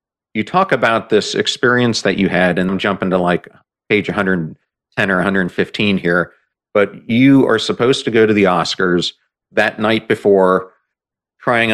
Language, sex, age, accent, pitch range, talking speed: English, male, 40-59, American, 90-105 Hz, 160 wpm